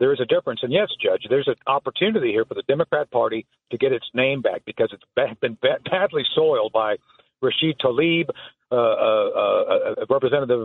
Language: English